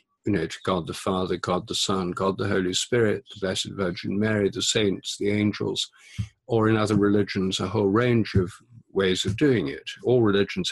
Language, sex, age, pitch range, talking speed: English, male, 50-69, 95-125 Hz, 195 wpm